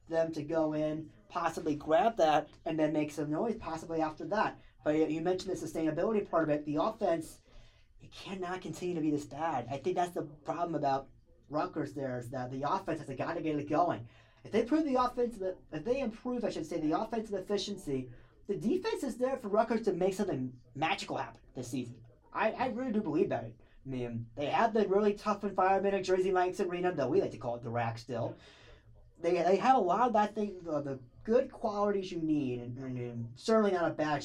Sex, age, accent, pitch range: male, 30-49, American, 130-185 Hz